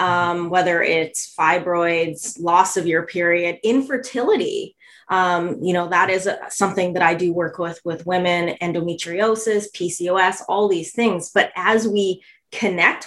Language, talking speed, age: English, 140 wpm, 20-39